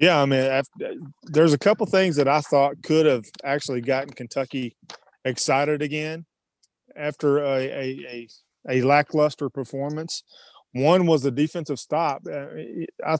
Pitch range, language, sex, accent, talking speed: 135-160 Hz, English, male, American, 140 wpm